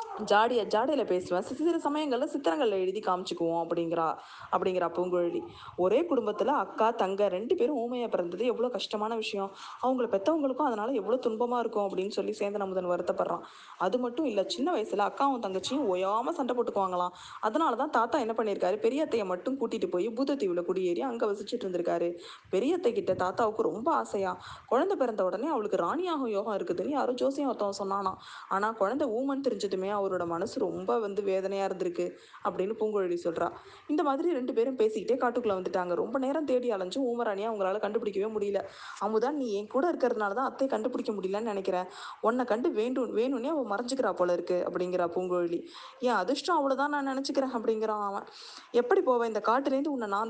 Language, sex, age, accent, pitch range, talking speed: Tamil, female, 20-39, native, 190-255 Hz, 100 wpm